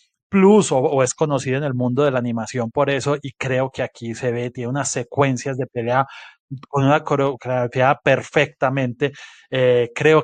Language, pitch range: Spanish, 130-150 Hz